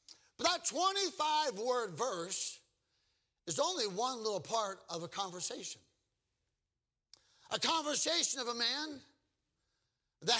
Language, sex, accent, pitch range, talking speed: English, male, American, 205-290 Hz, 100 wpm